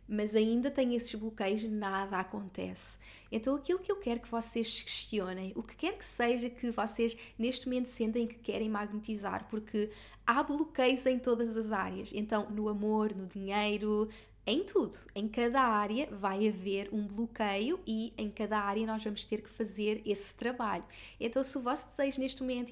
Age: 20-39